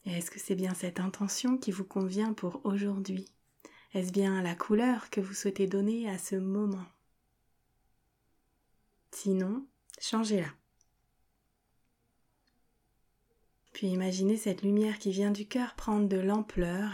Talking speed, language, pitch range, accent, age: 130 wpm, French, 180-205 Hz, French, 30-49